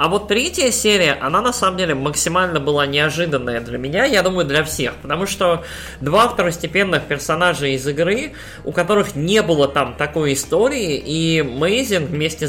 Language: Russian